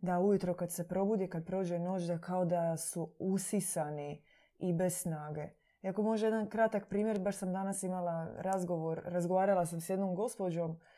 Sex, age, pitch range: female, 20-39, 170-195 Hz